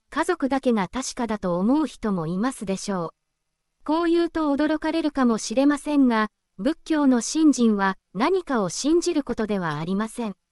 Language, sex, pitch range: Japanese, female, 220-305 Hz